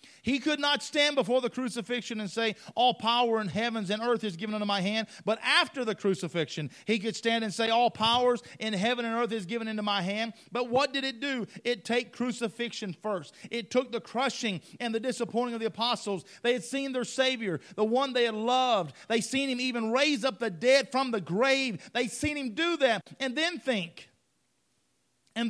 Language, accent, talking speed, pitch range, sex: English, American, 210 wpm, 210-255 Hz, male